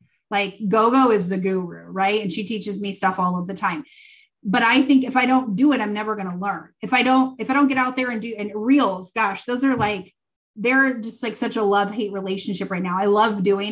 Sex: female